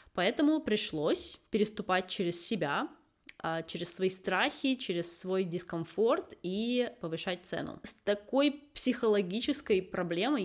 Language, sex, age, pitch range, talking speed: Russian, female, 20-39, 165-210 Hz, 105 wpm